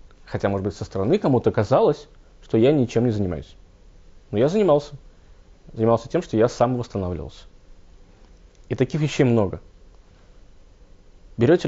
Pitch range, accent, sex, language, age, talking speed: 85-120 Hz, native, male, Russian, 20-39, 135 wpm